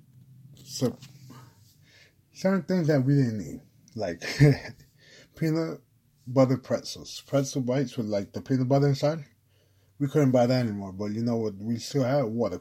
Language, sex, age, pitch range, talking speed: English, male, 20-39, 115-135 Hz, 150 wpm